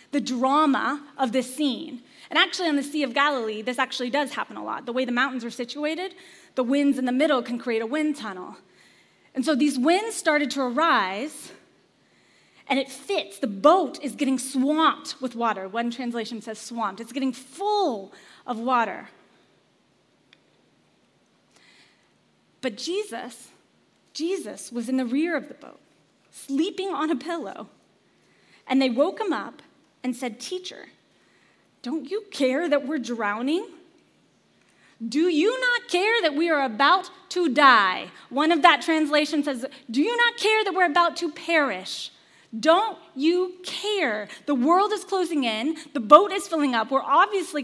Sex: female